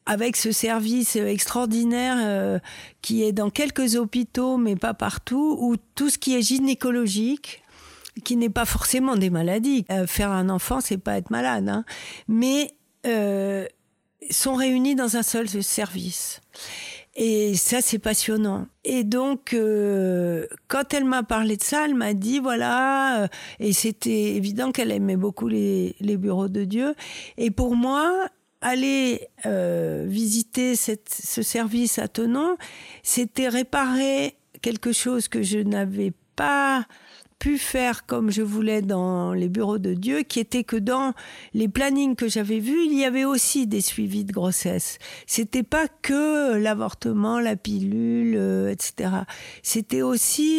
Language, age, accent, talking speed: French, 50-69, French, 150 wpm